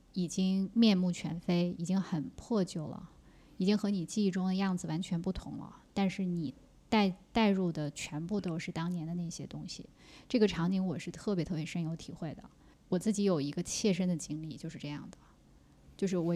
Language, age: Chinese, 20-39